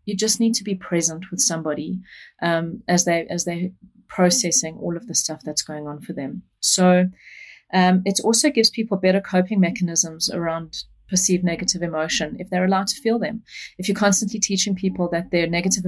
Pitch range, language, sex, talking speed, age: 165-190 Hz, English, female, 195 wpm, 30-49